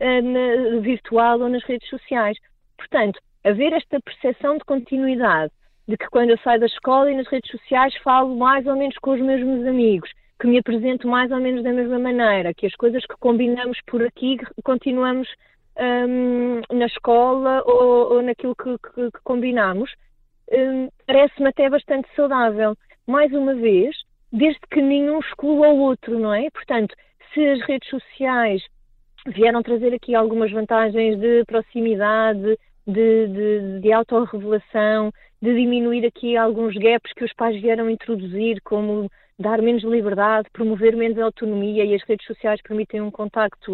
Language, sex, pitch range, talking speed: Portuguese, female, 220-265 Hz, 155 wpm